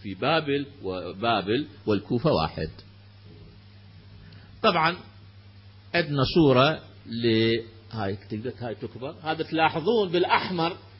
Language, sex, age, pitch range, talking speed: Arabic, male, 50-69, 100-160 Hz, 75 wpm